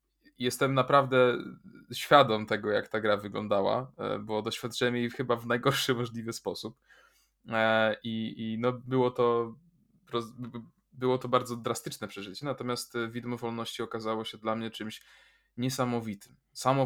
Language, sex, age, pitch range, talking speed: Polish, male, 20-39, 110-125 Hz, 130 wpm